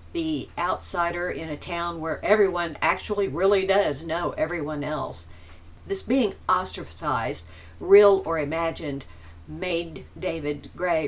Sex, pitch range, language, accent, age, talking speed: female, 140-190 Hz, English, American, 50-69, 120 wpm